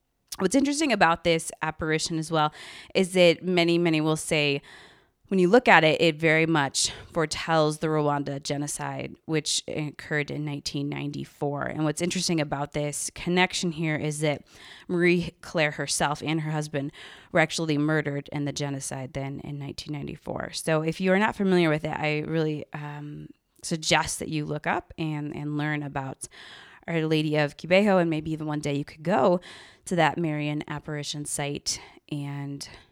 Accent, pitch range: American, 145-170 Hz